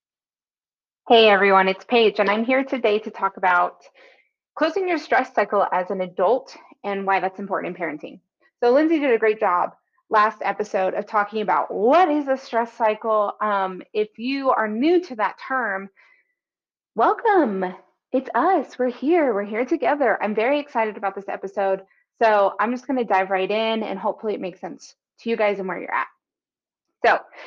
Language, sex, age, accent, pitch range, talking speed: English, female, 20-39, American, 200-260 Hz, 180 wpm